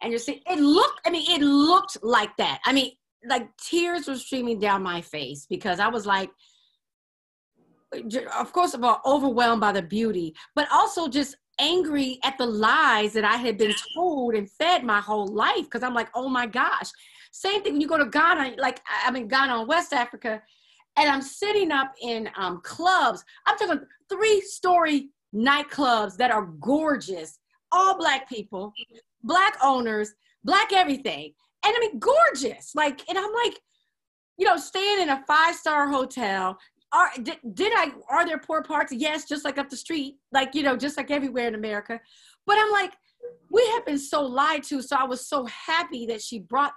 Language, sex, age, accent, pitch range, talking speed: English, female, 30-49, American, 230-335 Hz, 185 wpm